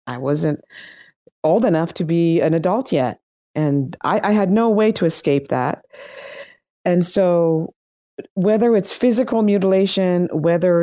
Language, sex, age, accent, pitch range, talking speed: English, female, 40-59, American, 160-245 Hz, 140 wpm